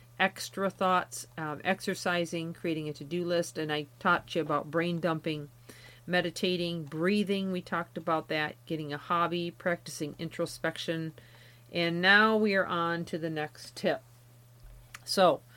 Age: 40-59